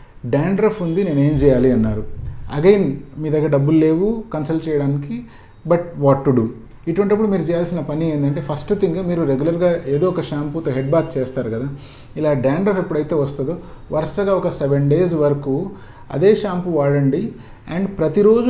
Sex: male